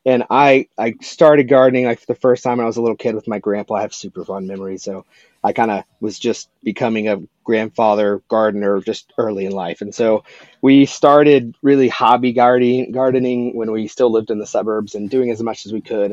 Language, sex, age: English, male, 30-49